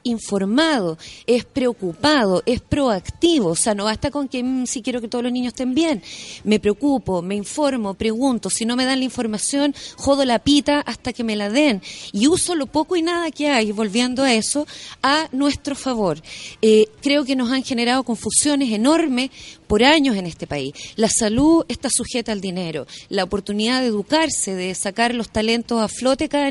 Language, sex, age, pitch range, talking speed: Spanish, female, 30-49, 225-290 Hz, 185 wpm